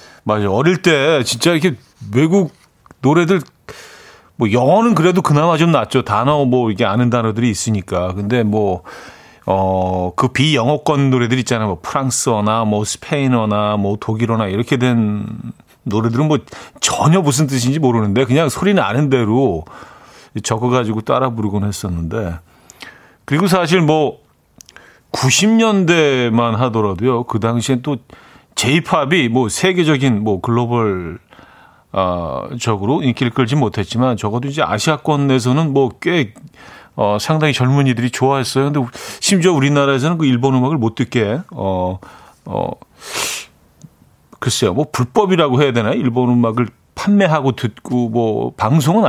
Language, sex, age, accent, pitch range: Korean, male, 40-59, native, 110-145 Hz